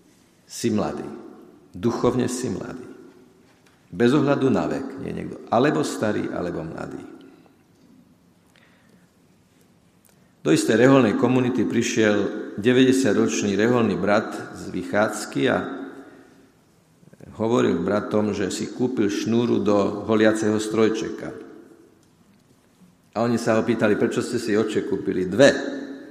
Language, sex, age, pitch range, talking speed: Slovak, male, 50-69, 105-125 Hz, 105 wpm